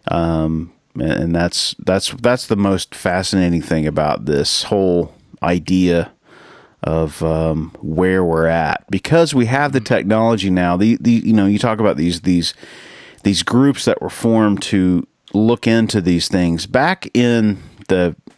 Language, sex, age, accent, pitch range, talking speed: English, male, 40-59, American, 85-110 Hz, 150 wpm